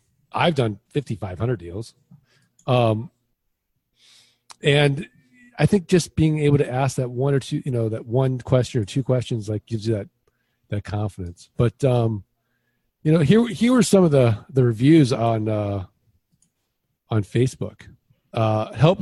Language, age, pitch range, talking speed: English, 40-59, 110-150 Hz, 150 wpm